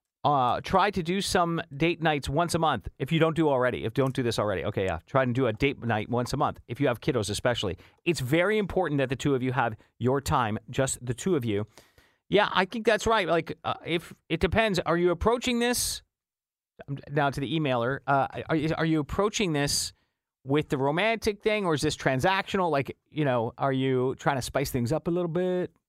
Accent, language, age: American, English, 40-59